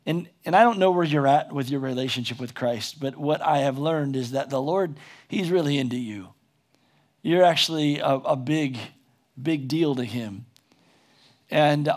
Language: English